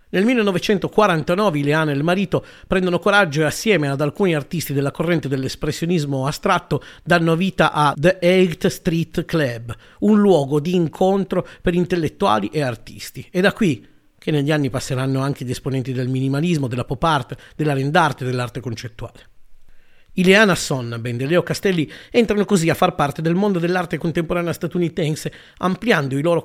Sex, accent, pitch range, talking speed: male, native, 145-190 Hz, 160 wpm